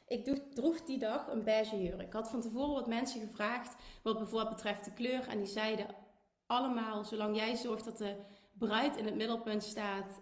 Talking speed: 195 wpm